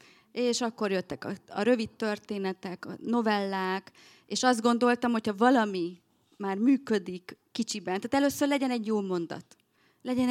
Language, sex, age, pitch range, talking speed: Hungarian, female, 30-49, 185-245 Hz, 135 wpm